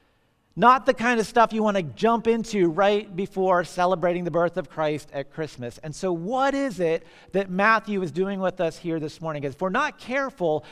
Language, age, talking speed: English, 40-59, 215 wpm